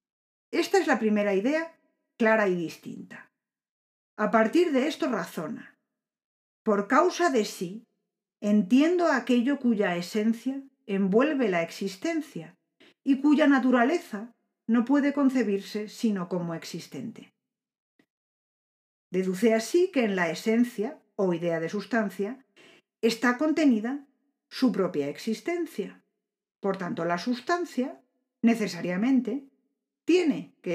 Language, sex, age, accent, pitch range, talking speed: Spanish, female, 50-69, Spanish, 195-270 Hz, 105 wpm